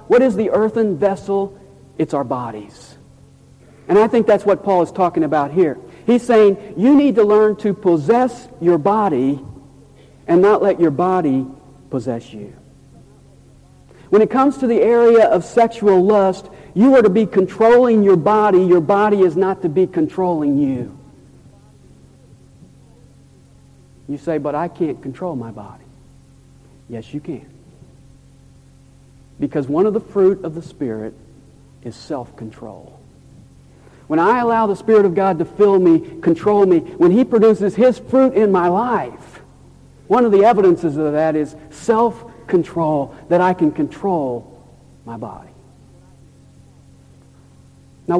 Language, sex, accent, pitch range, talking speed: English, male, American, 135-210 Hz, 145 wpm